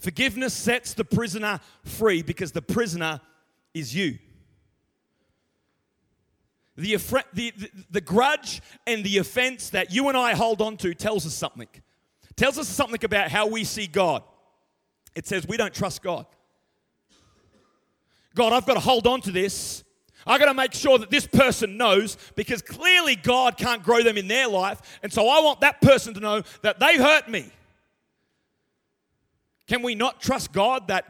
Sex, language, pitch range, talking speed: male, English, 180-265 Hz, 160 wpm